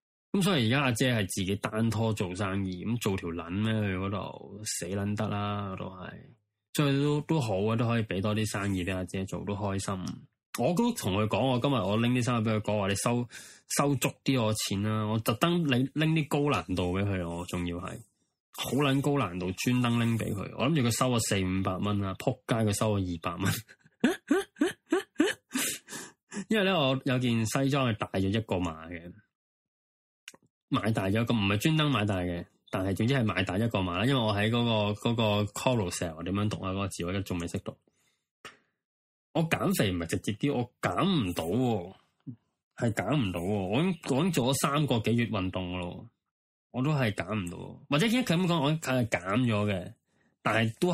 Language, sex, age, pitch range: Chinese, male, 20-39, 95-130 Hz